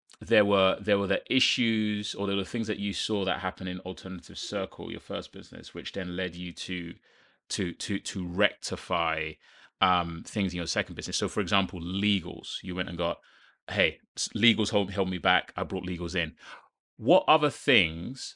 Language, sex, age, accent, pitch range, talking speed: English, male, 30-49, British, 95-120 Hz, 185 wpm